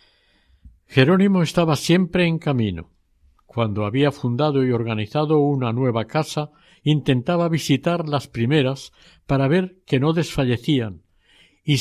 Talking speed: 115 wpm